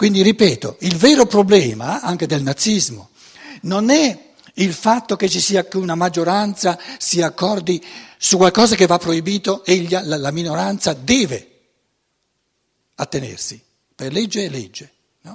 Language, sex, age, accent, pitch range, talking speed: Italian, male, 60-79, native, 160-225 Hz, 130 wpm